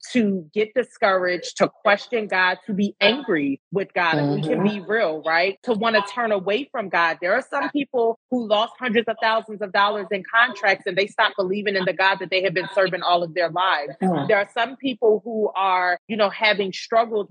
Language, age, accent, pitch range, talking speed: English, 30-49, American, 185-220 Hz, 215 wpm